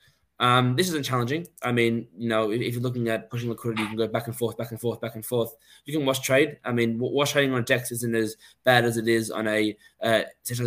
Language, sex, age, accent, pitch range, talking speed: English, male, 20-39, Australian, 115-140 Hz, 265 wpm